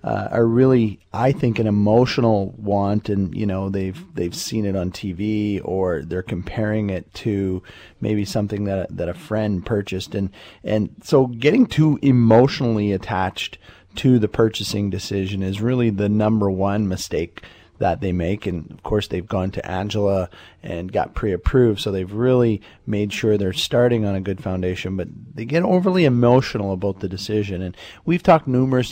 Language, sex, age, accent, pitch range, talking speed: English, male, 30-49, American, 95-115 Hz, 170 wpm